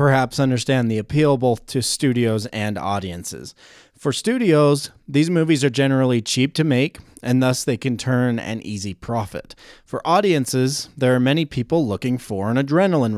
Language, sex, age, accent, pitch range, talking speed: English, male, 30-49, American, 115-150 Hz, 165 wpm